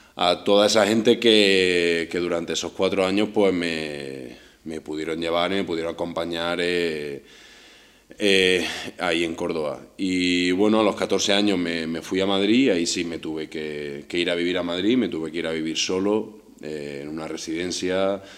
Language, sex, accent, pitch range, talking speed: Greek, male, Spanish, 80-100 Hz, 185 wpm